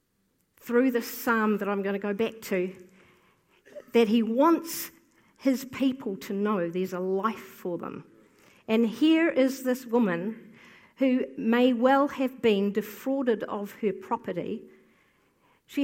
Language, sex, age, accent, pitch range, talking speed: English, female, 50-69, Australian, 200-260 Hz, 140 wpm